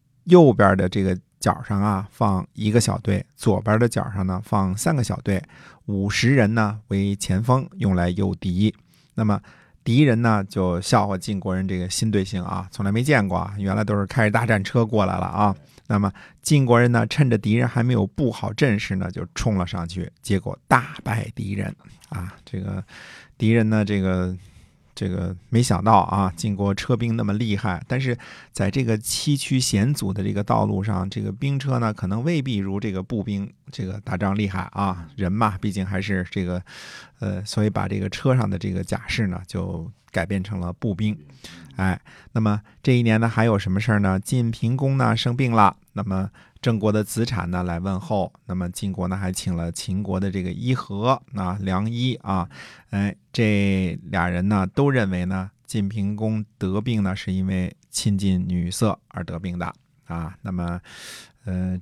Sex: male